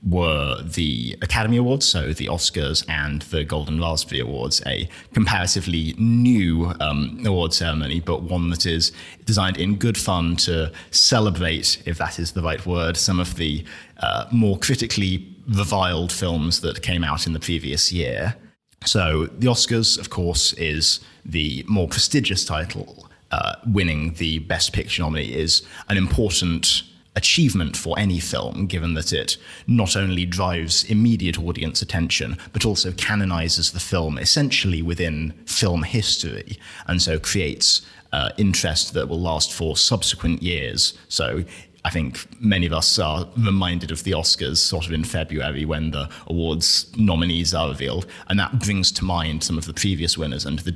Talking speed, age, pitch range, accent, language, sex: 160 wpm, 20-39, 80-100 Hz, British, English, male